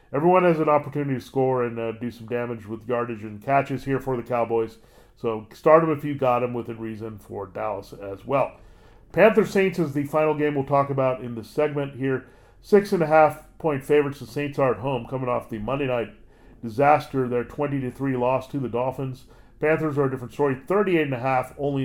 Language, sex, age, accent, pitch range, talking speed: English, male, 40-59, American, 120-145 Hz, 215 wpm